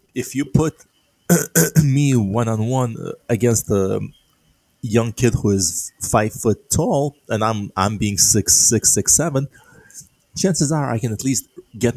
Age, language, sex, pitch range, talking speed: 20-39, English, male, 100-120 Hz, 145 wpm